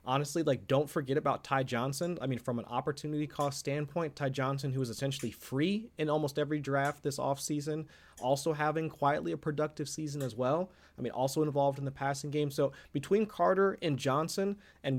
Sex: male